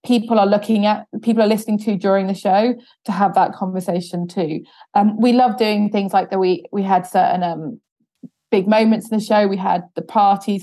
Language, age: English, 20-39